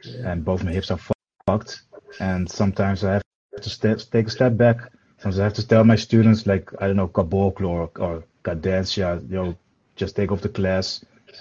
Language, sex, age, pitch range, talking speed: English, male, 30-49, 95-115 Hz, 205 wpm